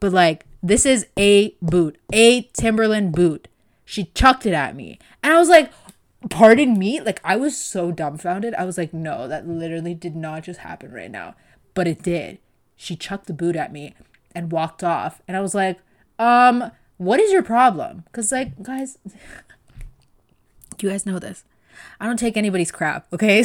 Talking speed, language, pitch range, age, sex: 180 wpm, English, 175-245 Hz, 20-39, female